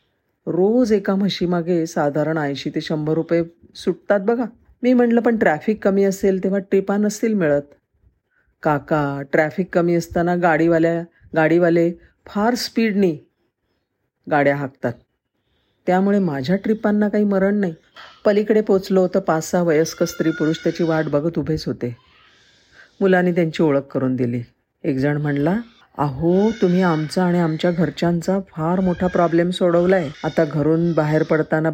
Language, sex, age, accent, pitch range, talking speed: Marathi, female, 40-59, native, 155-185 Hz, 135 wpm